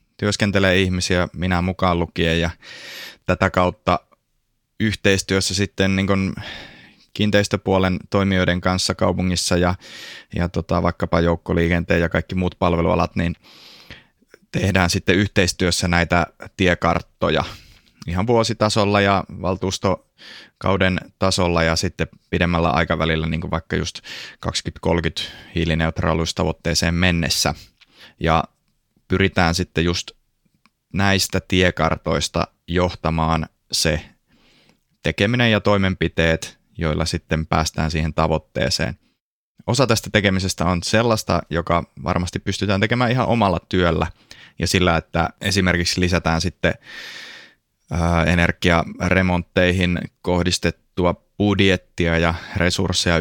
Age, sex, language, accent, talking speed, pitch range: 20-39, male, Finnish, native, 95 wpm, 85-95 Hz